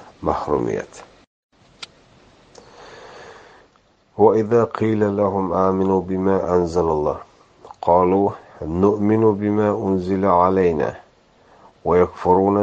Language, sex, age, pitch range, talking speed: Russian, male, 50-69, 90-100 Hz, 65 wpm